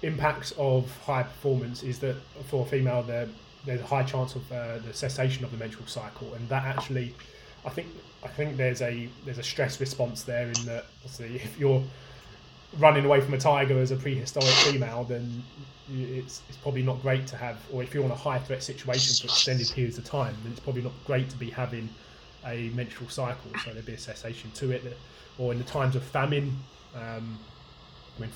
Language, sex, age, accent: English, male, 20-39, British